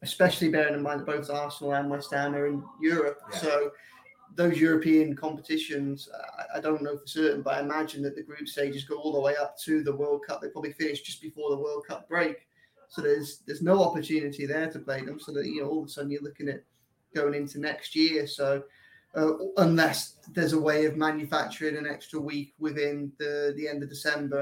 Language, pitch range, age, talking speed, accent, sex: English, 145-160 Hz, 20-39, 215 wpm, British, male